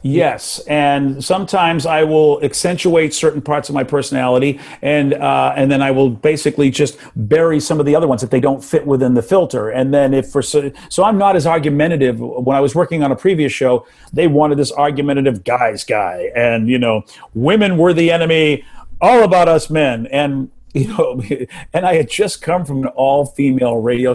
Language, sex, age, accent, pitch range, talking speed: English, male, 40-59, American, 135-170 Hz, 200 wpm